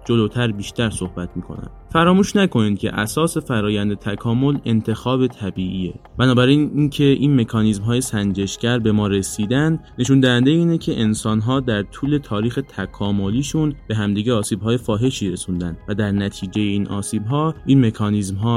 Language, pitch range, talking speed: Persian, 100-130 Hz, 135 wpm